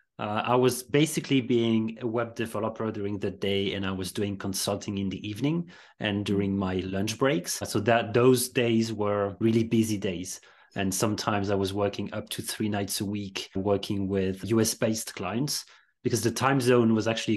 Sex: male